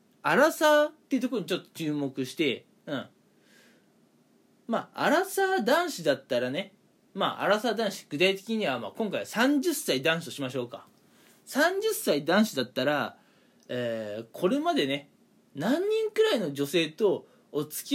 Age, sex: 20-39, male